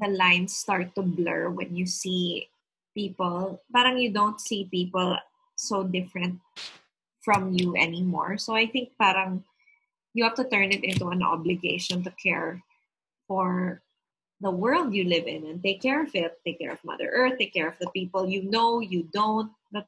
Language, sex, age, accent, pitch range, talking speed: English, female, 20-39, Filipino, 180-225 Hz, 180 wpm